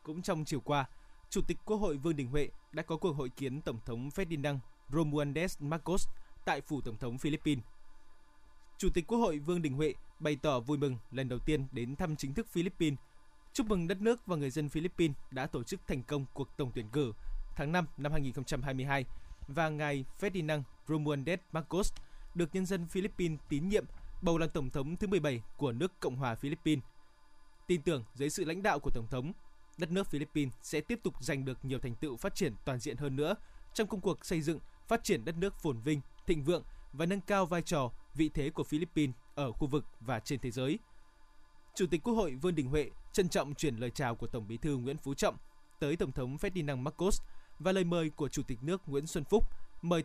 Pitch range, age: 140-175 Hz, 20-39